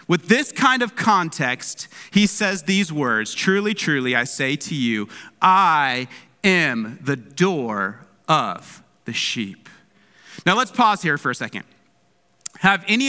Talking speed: 140 wpm